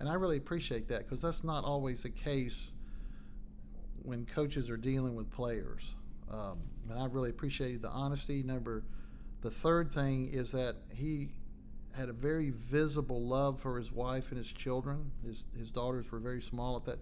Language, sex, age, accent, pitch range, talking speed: English, male, 40-59, American, 115-135 Hz, 175 wpm